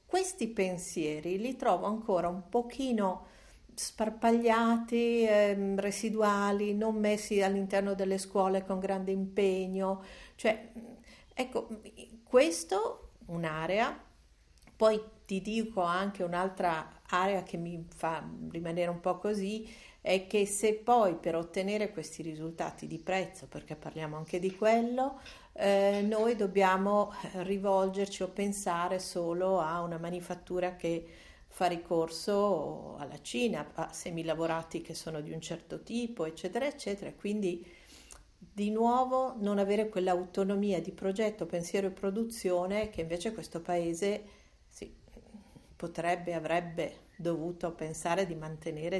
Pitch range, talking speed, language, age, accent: 170-215 Hz, 120 wpm, Italian, 50-69, native